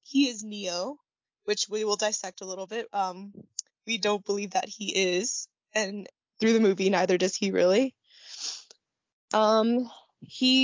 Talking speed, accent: 150 wpm, American